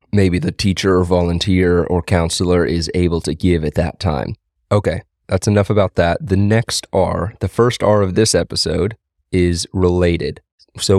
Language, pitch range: English, 85-100 Hz